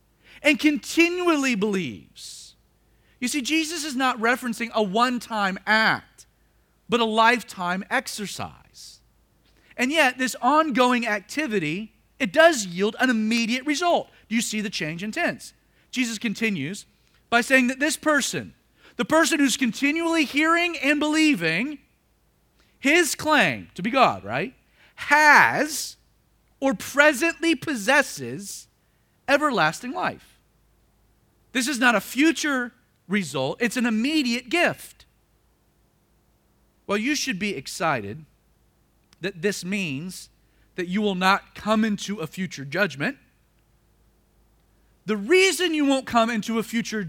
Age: 40-59